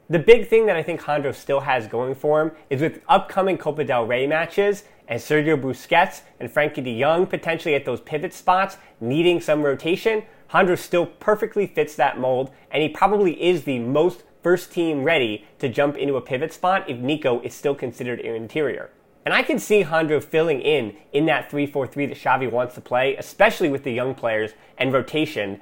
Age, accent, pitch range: 30-49, American, 140-185 Hz